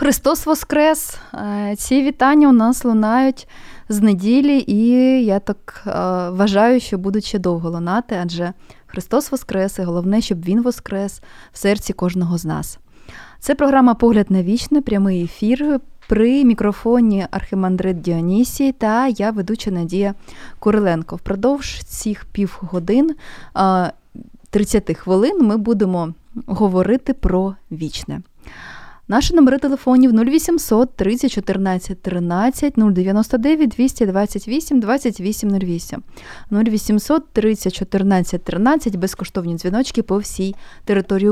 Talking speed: 100 wpm